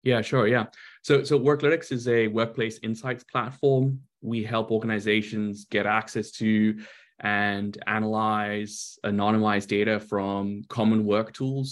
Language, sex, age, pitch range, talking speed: English, male, 20-39, 105-115 Hz, 130 wpm